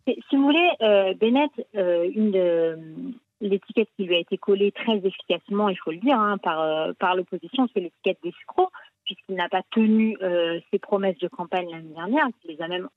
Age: 40-59